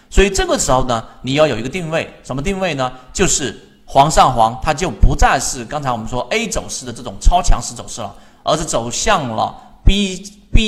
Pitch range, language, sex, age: 120-160 Hz, Chinese, male, 30-49